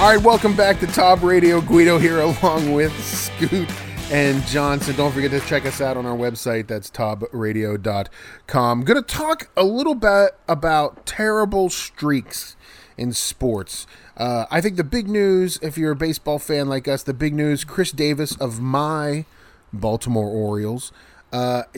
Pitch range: 120-165 Hz